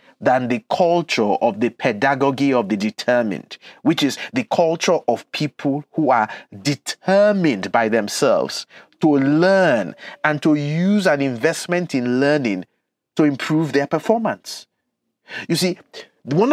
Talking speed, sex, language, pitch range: 130 wpm, male, English, 120-170 Hz